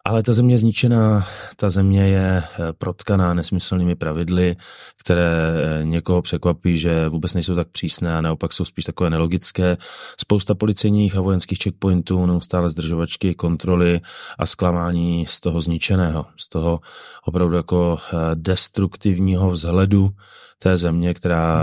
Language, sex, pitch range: Czech, male, 80-90 Hz